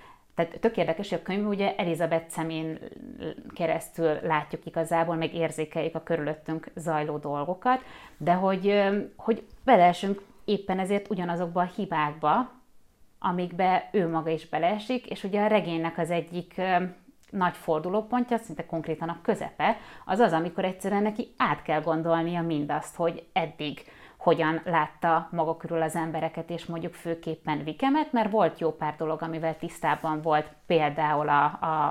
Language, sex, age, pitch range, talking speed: Hungarian, female, 30-49, 160-200 Hz, 140 wpm